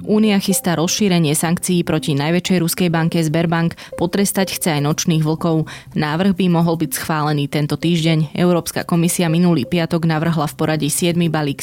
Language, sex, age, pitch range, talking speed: Slovak, female, 20-39, 155-175 Hz, 155 wpm